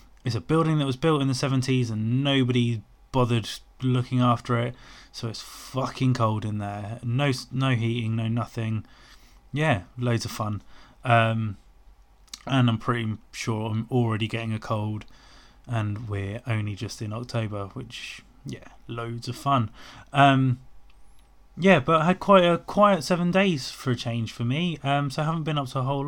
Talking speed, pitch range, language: 175 wpm, 115-135 Hz, English